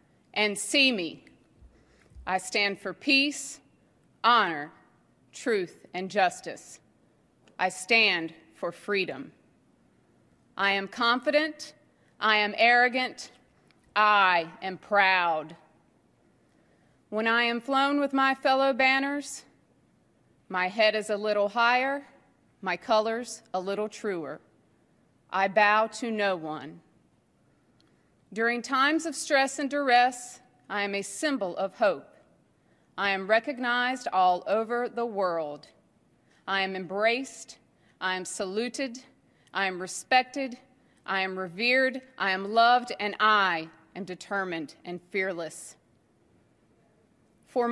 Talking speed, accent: 110 wpm, American